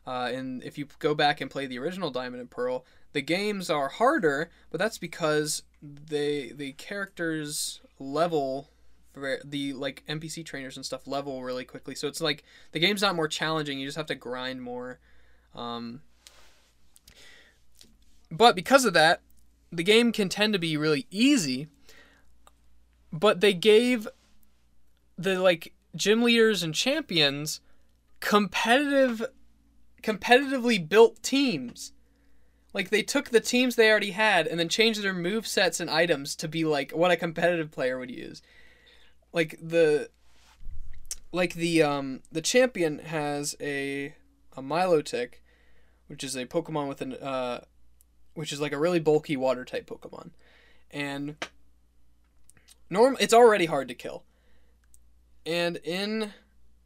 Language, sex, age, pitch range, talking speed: English, male, 20-39, 125-195 Hz, 140 wpm